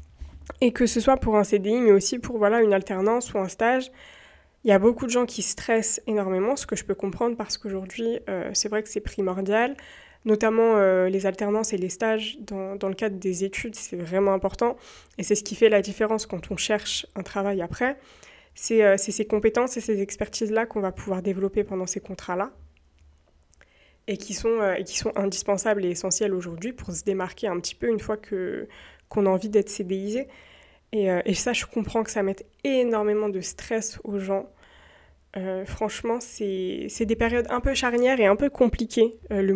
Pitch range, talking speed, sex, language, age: 195-225 Hz, 205 wpm, female, French, 20-39